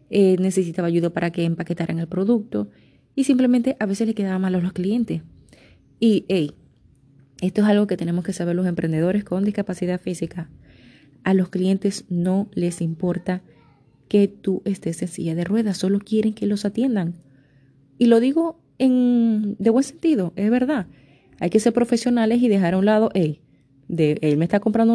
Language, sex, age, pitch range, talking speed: Spanish, female, 30-49, 170-230 Hz, 180 wpm